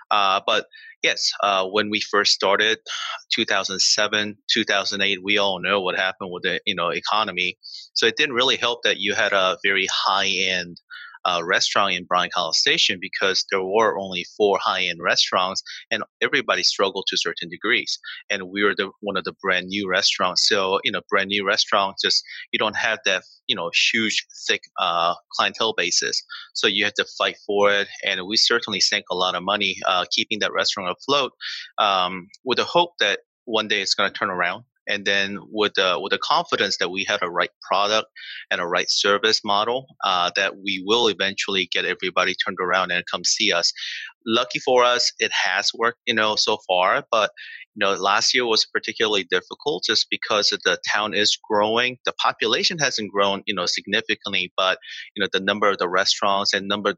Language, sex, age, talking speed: English, male, 30-49, 195 wpm